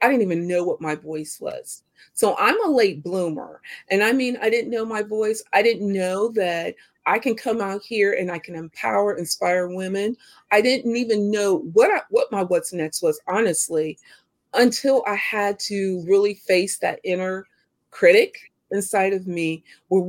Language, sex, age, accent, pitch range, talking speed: English, female, 40-59, American, 190-255 Hz, 180 wpm